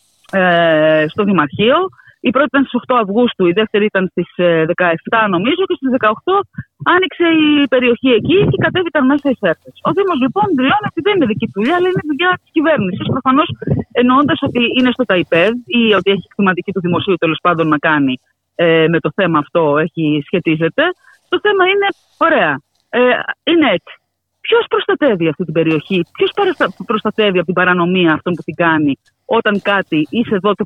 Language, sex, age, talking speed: Greek, female, 30-49, 175 wpm